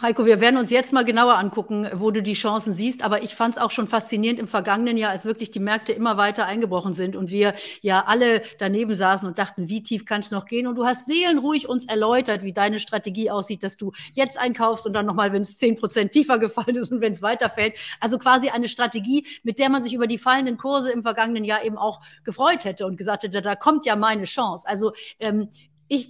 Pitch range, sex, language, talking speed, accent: 200-235 Hz, female, German, 235 wpm, German